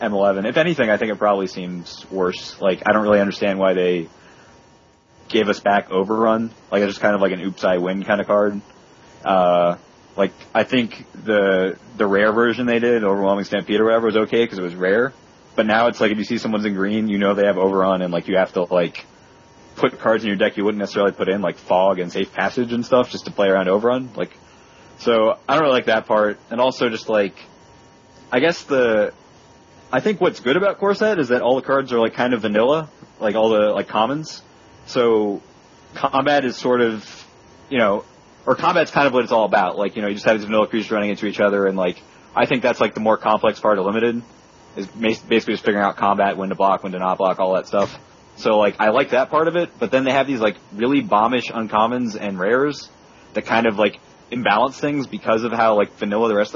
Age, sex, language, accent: 20-39, male, English, American